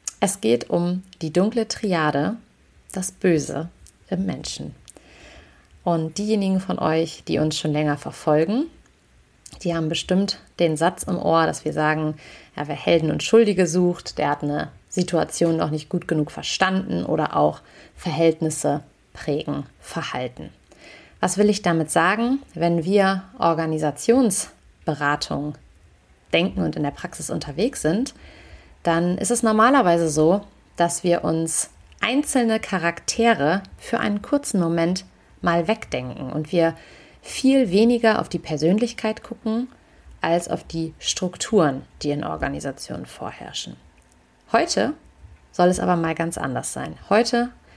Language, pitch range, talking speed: German, 155-195 Hz, 130 wpm